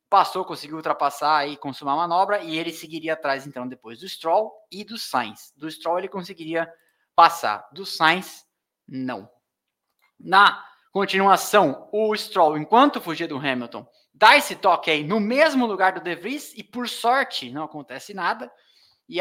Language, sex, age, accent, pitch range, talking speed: Portuguese, male, 20-39, Brazilian, 140-195 Hz, 160 wpm